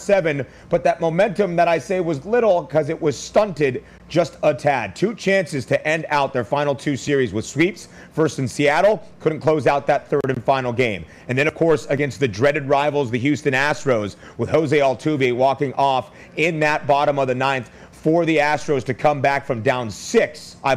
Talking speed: 200 wpm